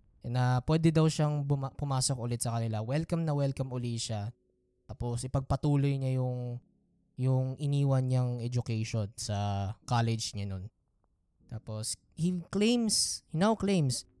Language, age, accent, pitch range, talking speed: Filipino, 20-39, native, 115-155 Hz, 135 wpm